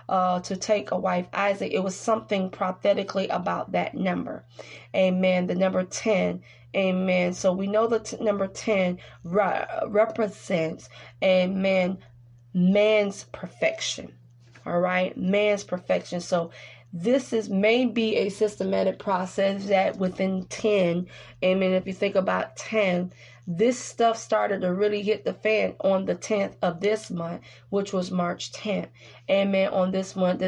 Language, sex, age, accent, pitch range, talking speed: English, female, 20-39, American, 185-210 Hz, 145 wpm